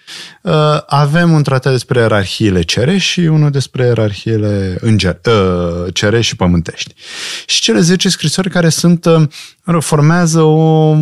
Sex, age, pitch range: male, 20-39, 100-155 Hz